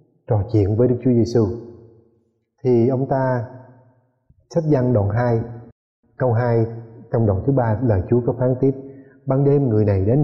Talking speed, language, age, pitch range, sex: 170 wpm, Vietnamese, 20-39, 105-135 Hz, male